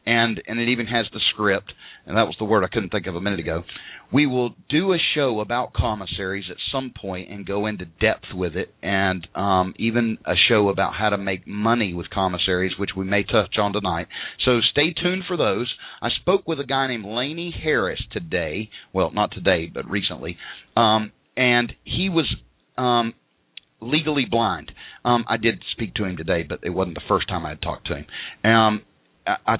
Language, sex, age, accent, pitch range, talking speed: English, male, 40-59, American, 90-115 Hz, 195 wpm